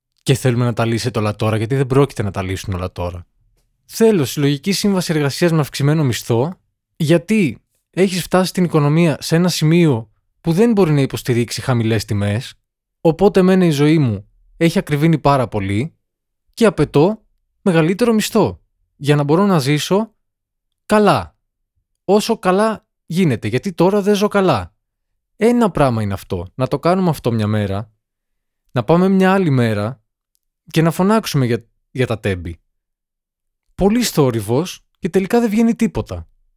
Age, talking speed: 20-39, 155 wpm